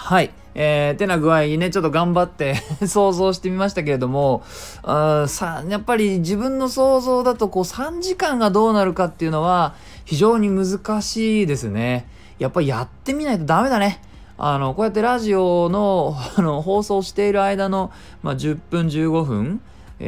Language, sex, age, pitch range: Japanese, male, 20-39, 115-190 Hz